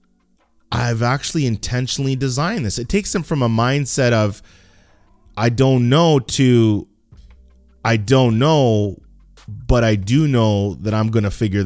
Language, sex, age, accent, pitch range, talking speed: English, male, 20-39, American, 110-150 Hz, 145 wpm